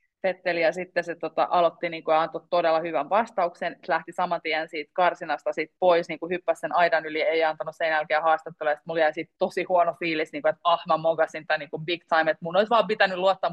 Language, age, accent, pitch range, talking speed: Finnish, 30-49, native, 155-180 Hz, 225 wpm